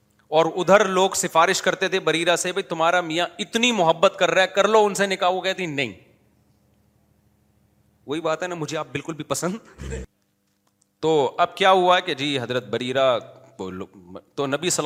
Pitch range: 120-170 Hz